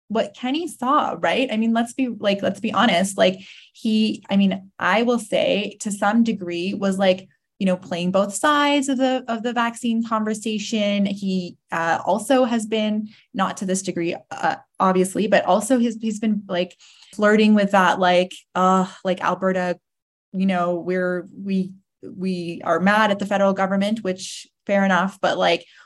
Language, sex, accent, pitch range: English, female, American, 185-215 Hz